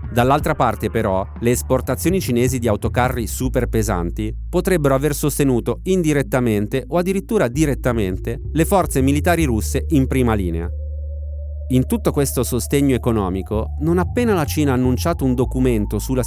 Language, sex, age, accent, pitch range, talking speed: Italian, male, 30-49, native, 105-140 Hz, 140 wpm